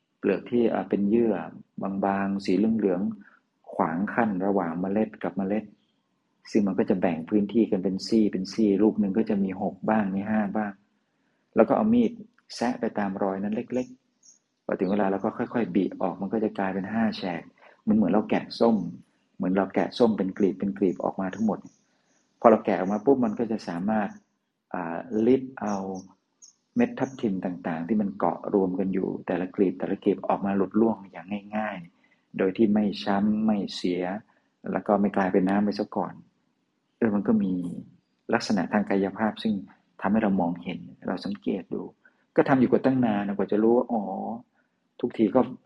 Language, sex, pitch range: Thai, male, 95-110 Hz